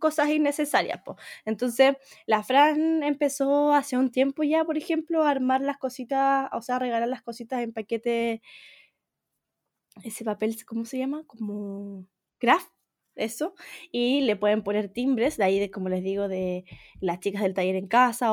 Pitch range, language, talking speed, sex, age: 200-270 Hz, Spanish, 165 wpm, female, 10-29